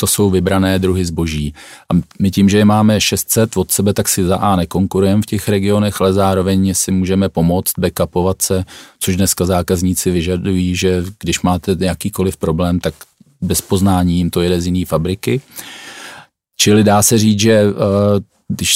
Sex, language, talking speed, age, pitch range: male, Czech, 170 wpm, 40-59, 90-100 Hz